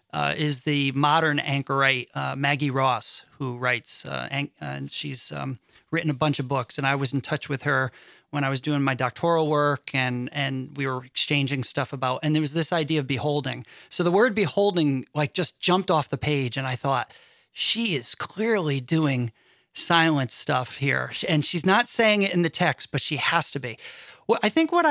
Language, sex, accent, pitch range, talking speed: English, male, American, 140-180 Hz, 200 wpm